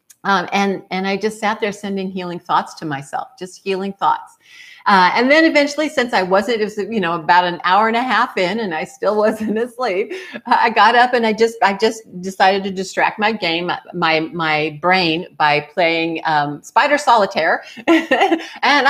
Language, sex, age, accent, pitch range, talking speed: English, female, 50-69, American, 170-230 Hz, 190 wpm